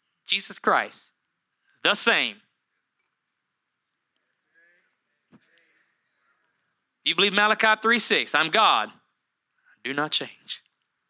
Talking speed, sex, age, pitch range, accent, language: 70 wpm, male, 30-49, 210-275 Hz, American, English